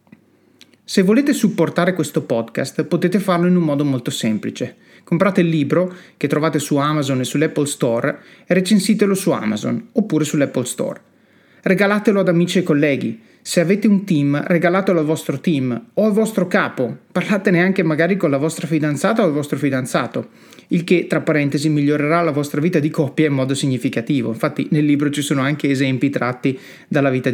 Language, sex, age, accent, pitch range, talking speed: Italian, male, 30-49, native, 145-180 Hz, 175 wpm